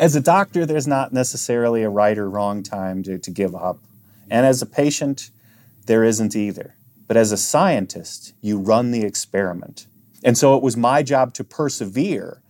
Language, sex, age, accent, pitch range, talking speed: English, male, 30-49, American, 110-140 Hz, 180 wpm